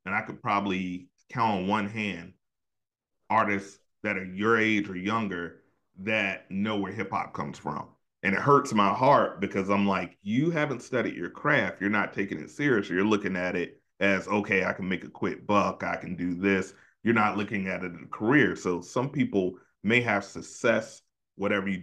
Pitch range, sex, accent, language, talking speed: 90-105 Hz, male, American, English, 200 wpm